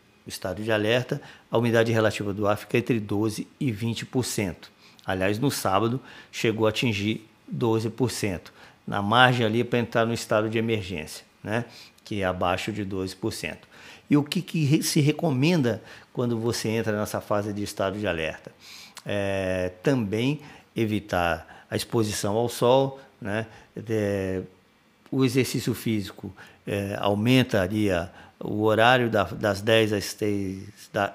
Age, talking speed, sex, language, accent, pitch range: 50-69, 135 wpm, male, Portuguese, Brazilian, 100-125 Hz